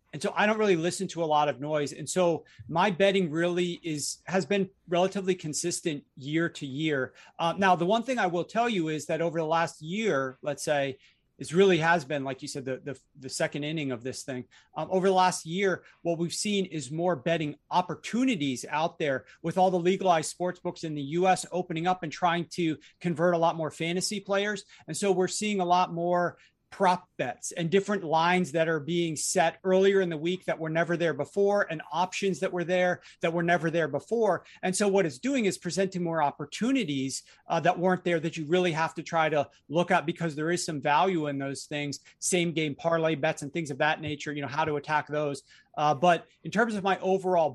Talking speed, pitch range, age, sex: 225 wpm, 155-185 Hz, 30-49, male